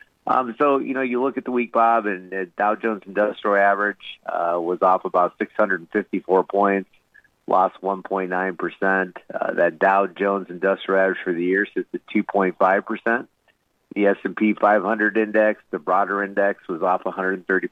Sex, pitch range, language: male, 95-110 Hz, English